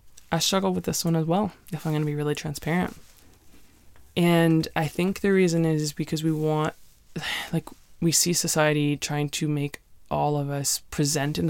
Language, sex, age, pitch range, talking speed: English, female, 20-39, 145-165 Hz, 185 wpm